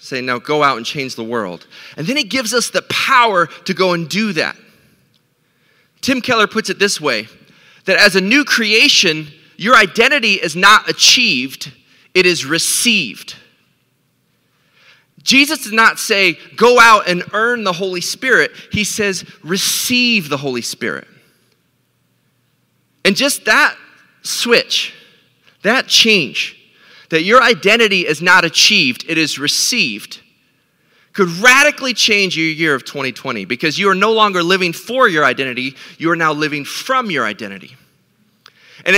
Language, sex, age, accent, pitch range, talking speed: English, male, 30-49, American, 165-235 Hz, 145 wpm